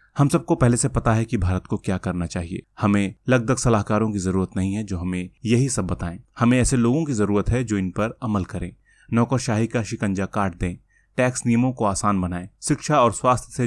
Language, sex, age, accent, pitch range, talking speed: Hindi, male, 30-49, native, 100-120 Hz, 215 wpm